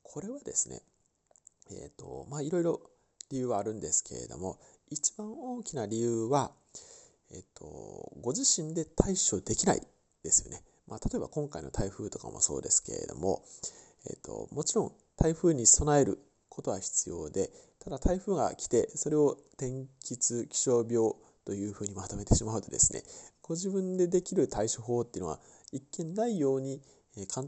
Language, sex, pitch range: Japanese, male, 110-180 Hz